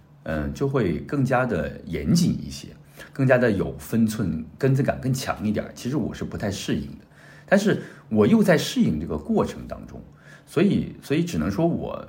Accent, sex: native, male